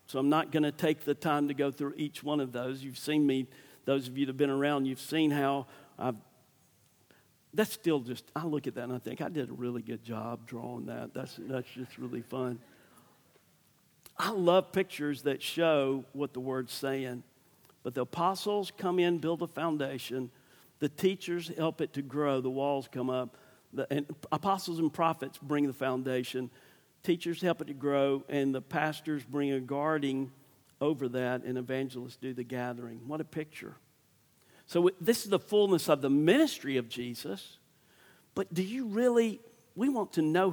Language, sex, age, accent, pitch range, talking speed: English, male, 50-69, American, 130-170 Hz, 185 wpm